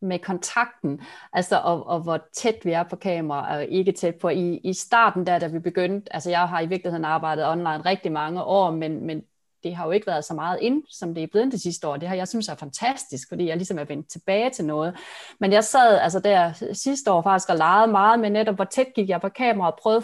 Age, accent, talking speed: 30-49, native, 250 wpm